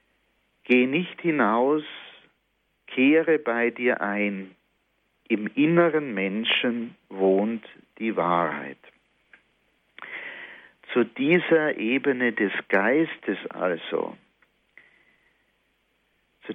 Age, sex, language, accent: 50-69, male, German, German